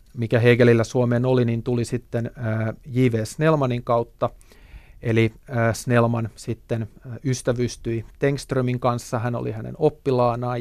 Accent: native